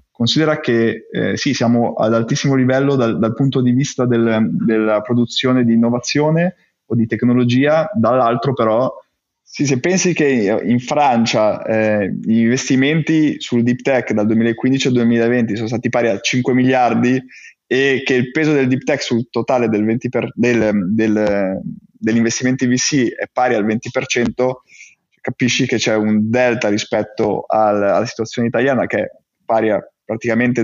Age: 20-39